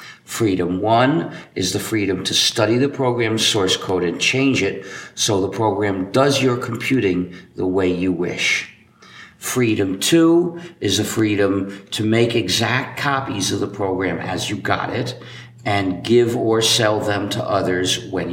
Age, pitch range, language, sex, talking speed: 50-69, 95-125 Hz, English, male, 155 wpm